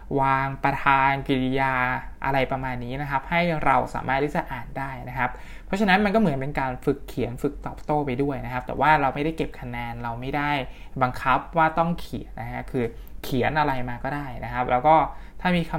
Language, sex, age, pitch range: Thai, male, 20-39, 130-160 Hz